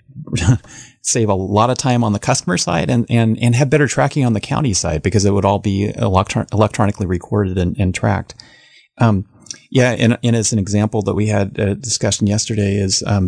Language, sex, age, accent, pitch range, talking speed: English, male, 30-49, American, 95-115 Hz, 205 wpm